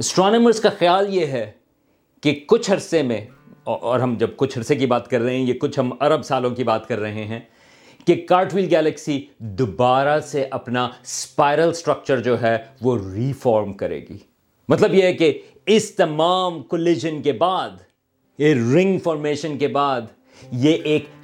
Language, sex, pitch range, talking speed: Urdu, male, 130-195 Hz, 170 wpm